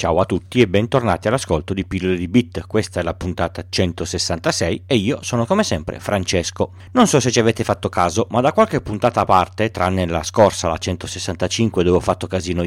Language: Italian